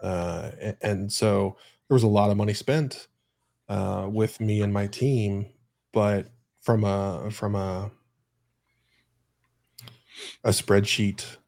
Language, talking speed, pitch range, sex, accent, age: English, 120 wpm, 100-120 Hz, male, American, 20-39